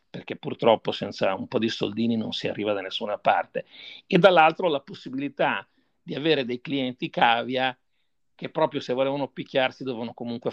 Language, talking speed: Italian, 165 wpm